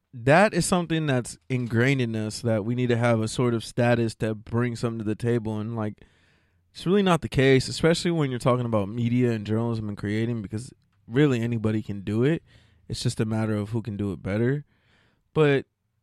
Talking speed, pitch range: 210 wpm, 110-135 Hz